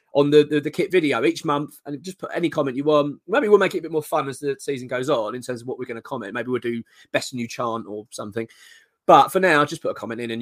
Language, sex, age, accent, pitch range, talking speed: English, male, 20-39, British, 125-175 Hz, 305 wpm